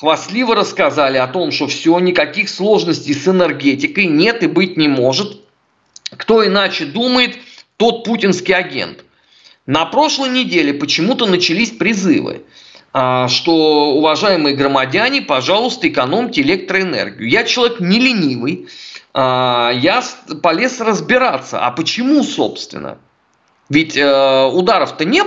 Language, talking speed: Russian, 110 wpm